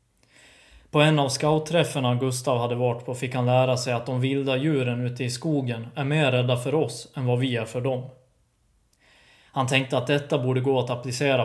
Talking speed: 200 wpm